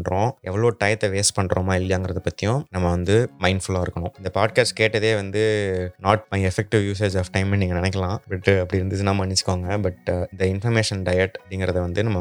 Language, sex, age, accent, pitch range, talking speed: Tamil, male, 20-39, native, 90-105 Hz, 180 wpm